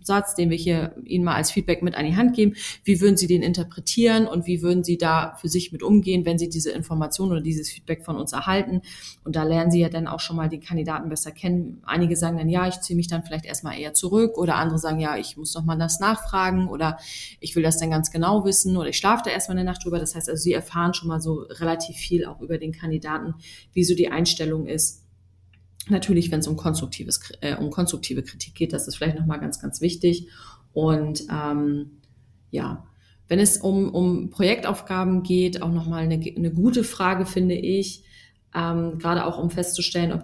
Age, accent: 30-49, German